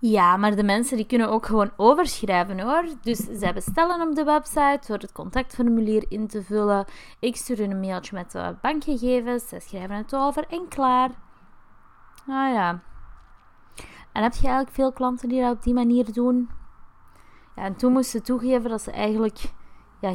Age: 20-39